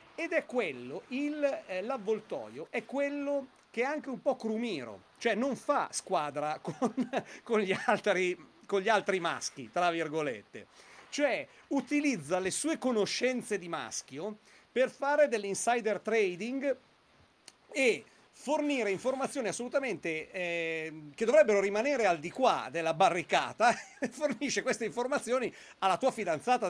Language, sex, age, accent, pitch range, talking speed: Italian, male, 40-59, native, 175-245 Hz, 130 wpm